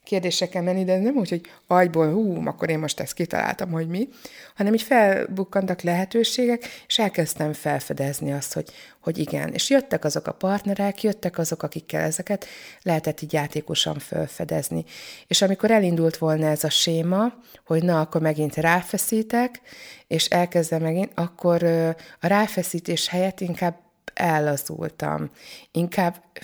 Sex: female